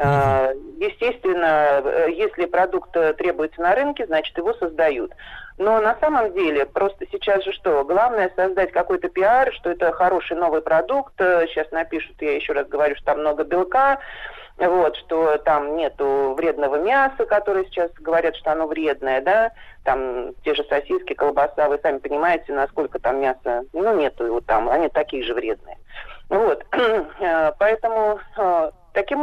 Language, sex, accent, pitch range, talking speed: Russian, male, native, 155-215 Hz, 145 wpm